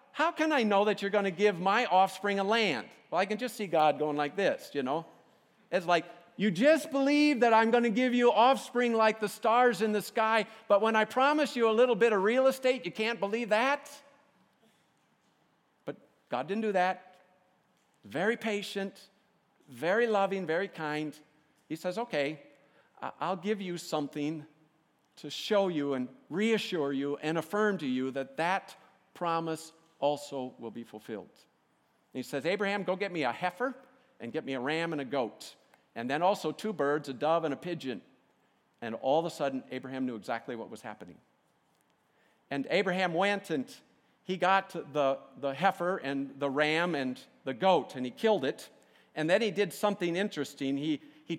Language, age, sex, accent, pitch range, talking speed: English, 50-69, male, American, 150-215 Hz, 180 wpm